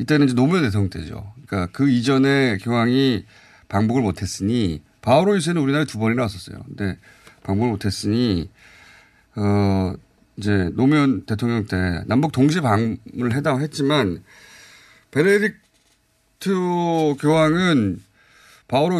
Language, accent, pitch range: Korean, native, 100-145 Hz